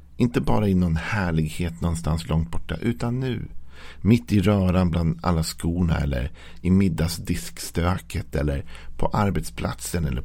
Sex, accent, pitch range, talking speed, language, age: male, native, 80-100 Hz, 135 wpm, Swedish, 50-69